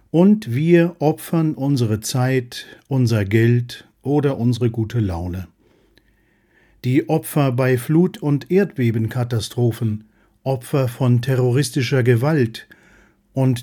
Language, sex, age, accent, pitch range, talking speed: German, male, 50-69, German, 115-145 Hz, 95 wpm